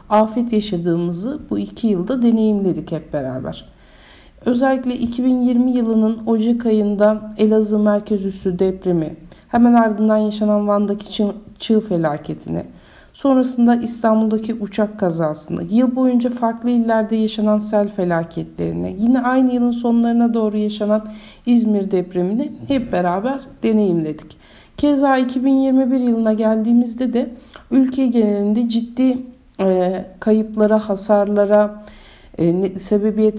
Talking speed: 100 wpm